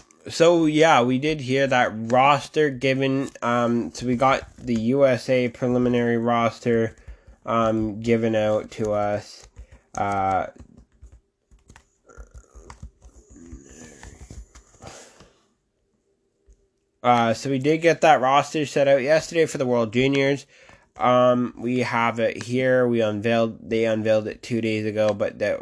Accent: American